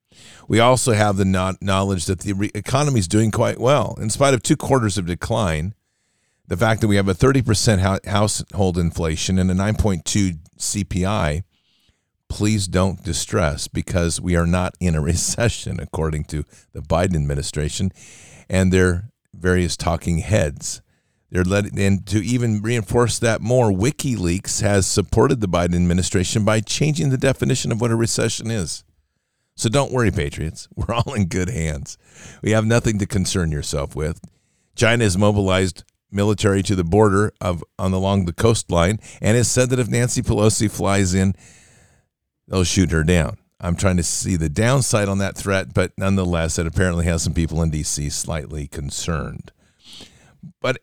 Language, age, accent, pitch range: English, 50-69, American, 90-110 Hz